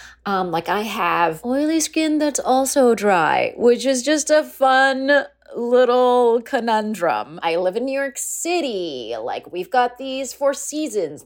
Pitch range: 180-270 Hz